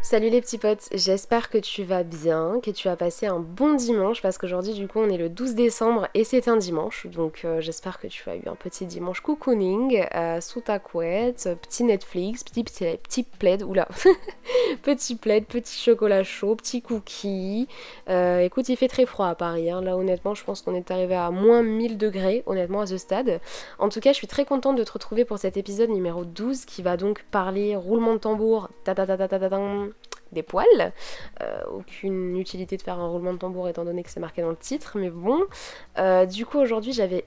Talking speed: 210 wpm